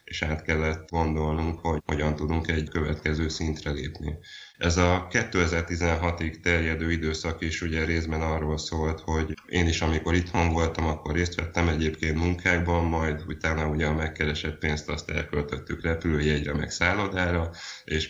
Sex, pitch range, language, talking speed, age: male, 75-85 Hz, Hungarian, 145 wpm, 20-39